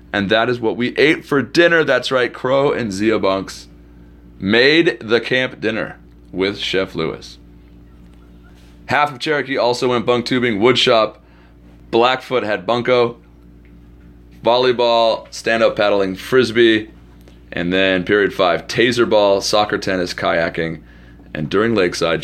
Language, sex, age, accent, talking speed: English, male, 30-49, American, 130 wpm